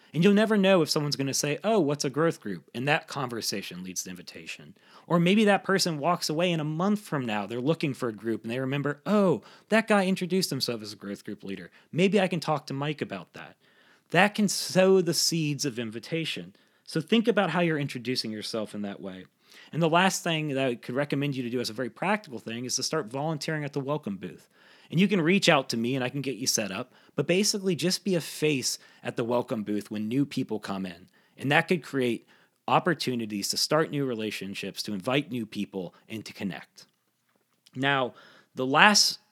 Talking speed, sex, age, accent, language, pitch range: 225 wpm, male, 30-49, American, English, 115-170 Hz